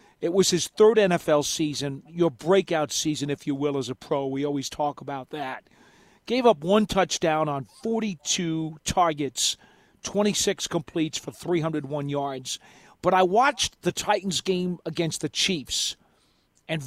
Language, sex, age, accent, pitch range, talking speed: English, male, 40-59, American, 150-190 Hz, 150 wpm